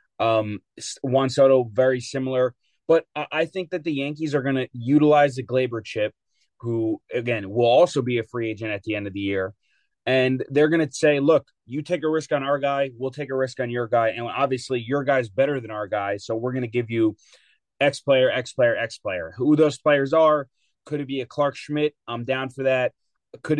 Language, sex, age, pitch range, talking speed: English, male, 30-49, 120-150 Hz, 225 wpm